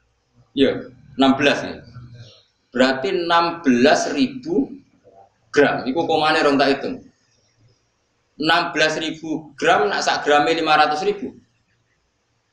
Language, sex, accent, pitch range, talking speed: English, male, Indonesian, 110-155 Hz, 95 wpm